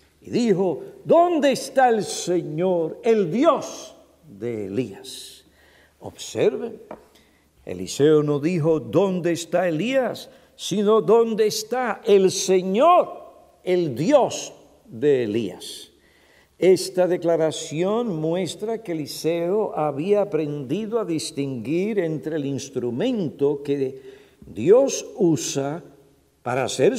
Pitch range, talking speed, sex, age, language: 150-225 Hz, 95 wpm, male, 50-69, Spanish